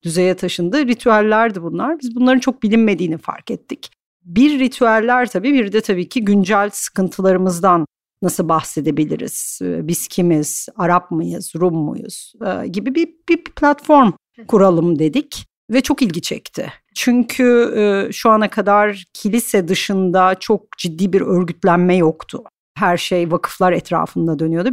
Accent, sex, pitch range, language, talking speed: native, female, 170-225 Hz, Turkish, 130 wpm